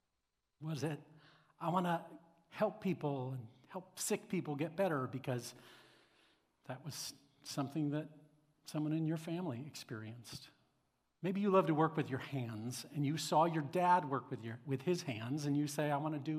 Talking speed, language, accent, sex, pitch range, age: 180 wpm, English, American, male, 135-180 Hz, 50-69